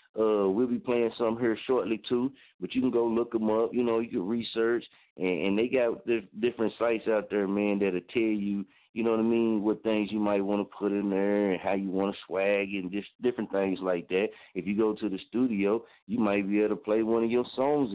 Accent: American